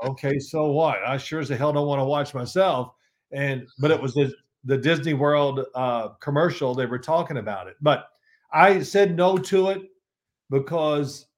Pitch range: 135-170 Hz